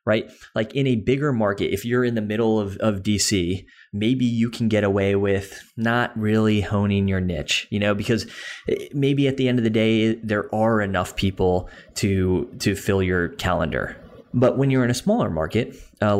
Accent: American